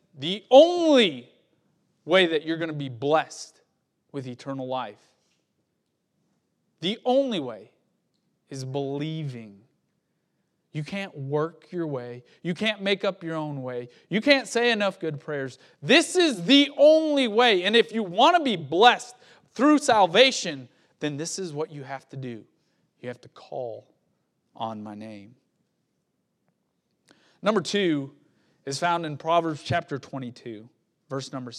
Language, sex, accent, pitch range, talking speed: English, male, American, 140-205 Hz, 140 wpm